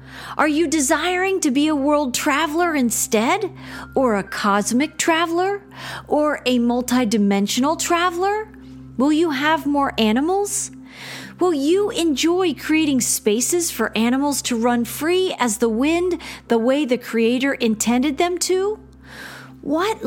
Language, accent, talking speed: English, American, 130 wpm